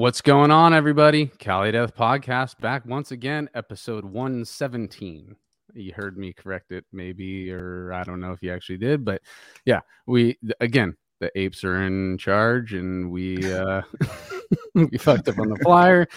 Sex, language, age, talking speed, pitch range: male, English, 30-49, 165 wpm, 95-115 Hz